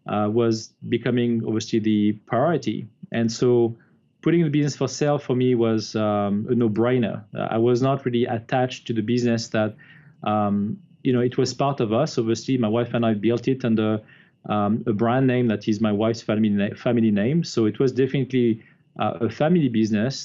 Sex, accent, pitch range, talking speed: male, French, 110-135 Hz, 190 wpm